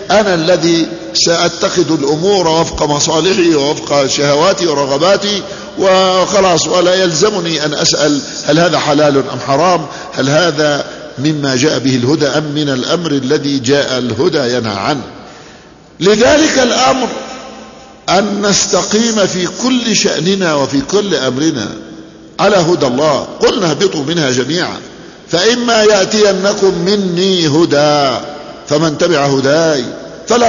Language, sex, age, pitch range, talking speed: Arabic, male, 50-69, 155-205 Hz, 115 wpm